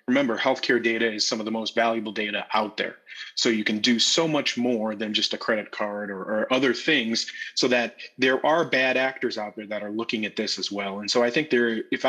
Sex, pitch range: male, 110-125 Hz